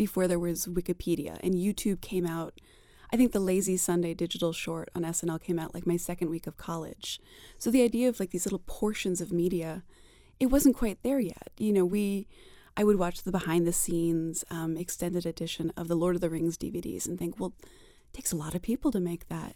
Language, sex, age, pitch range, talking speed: English, female, 20-39, 175-225 Hz, 220 wpm